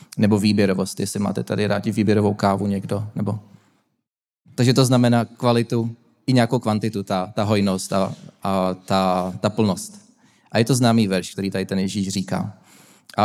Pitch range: 100-115 Hz